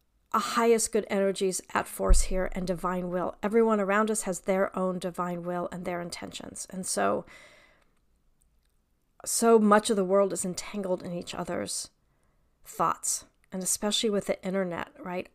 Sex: female